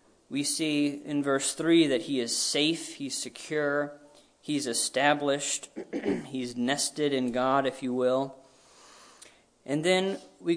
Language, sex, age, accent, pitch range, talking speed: English, male, 40-59, American, 130-165 Hz, 130 wpm